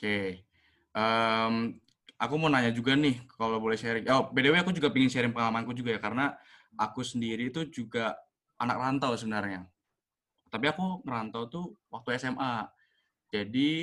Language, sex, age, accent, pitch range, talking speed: Indonesian, male, 20-39, native, 105-125 Hz, 150 wpm